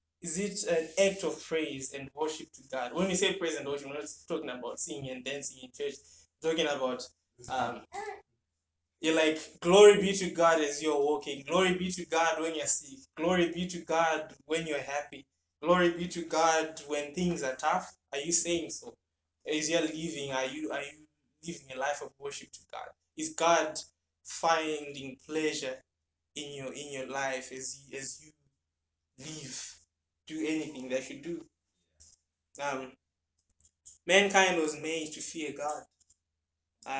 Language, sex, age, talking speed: English, male, 20-39, 170 wpm